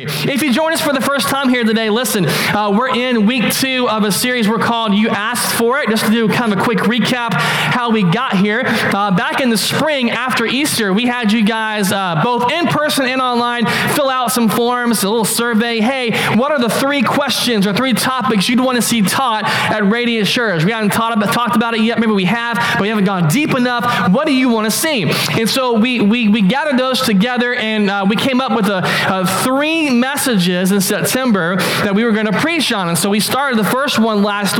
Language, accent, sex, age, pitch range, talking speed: English, American, male, 20-39, 205-245 Hz, 235 wpm